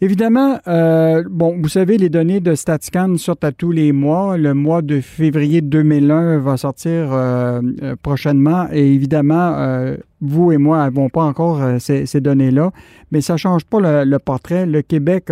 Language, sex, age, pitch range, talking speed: French, male, 50-69, 140-175 Hz, 180 wpm